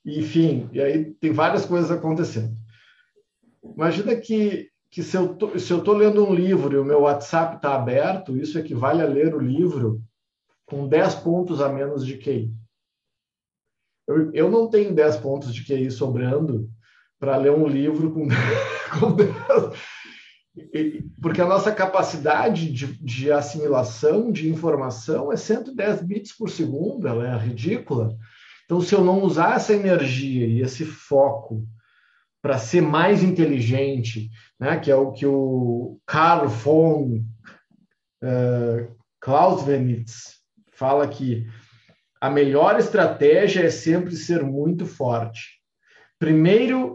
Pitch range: 130-175 Hz